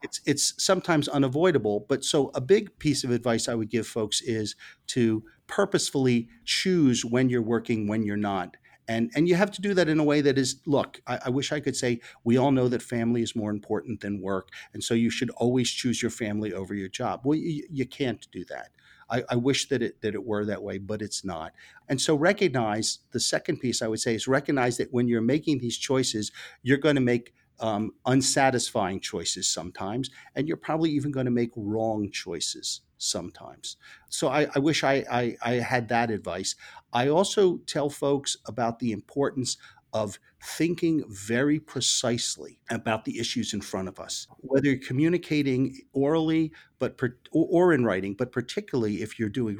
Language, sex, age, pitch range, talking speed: English, male, 40-59, 110-140 Hz, 195 wpm